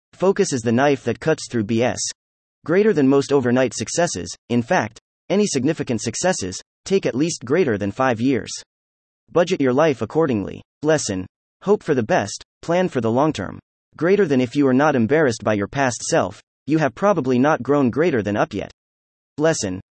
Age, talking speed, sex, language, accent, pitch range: 30-49, 180 wpm, male, English, American, 110-160 Hz